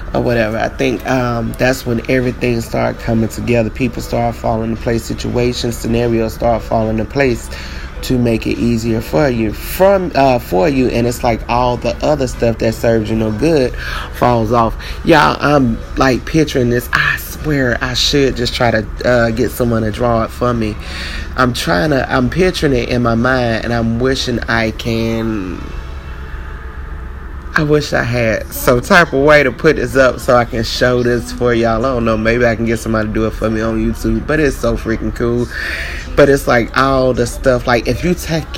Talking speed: 200 wpm